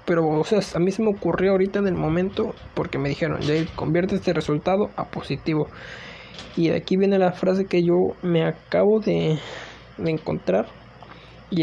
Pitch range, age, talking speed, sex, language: 160-190 Hz, 20-39, 180 wpm, male, Spanish